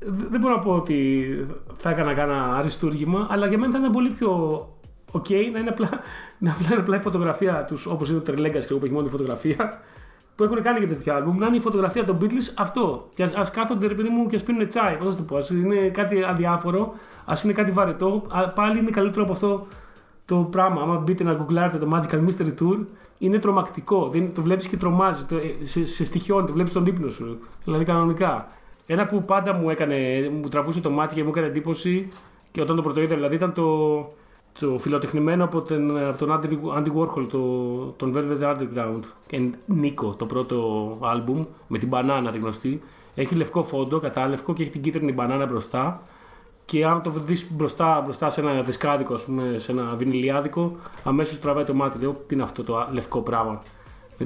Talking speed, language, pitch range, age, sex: 200 wpm, Greek, 140-190 Hz, 30-49, male